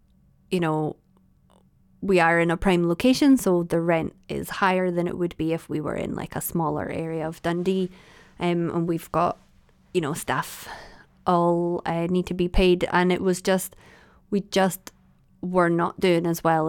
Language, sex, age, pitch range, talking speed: English, female, 20-39, 170-190 Hz, 185 wpm